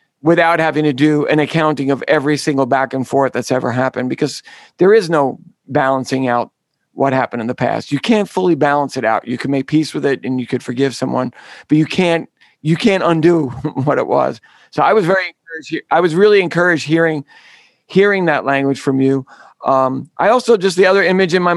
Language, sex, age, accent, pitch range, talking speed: English, male, 50-69, American, 135-165 Hz, 210 wpm